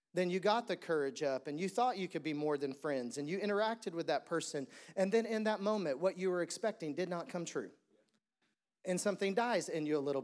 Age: 40-59